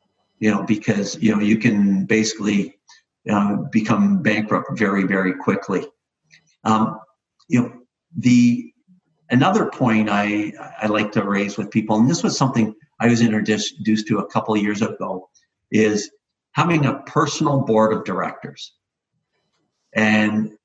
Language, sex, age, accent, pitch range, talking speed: English, male, 50-69, American, 105-135 Hz, 140 wpm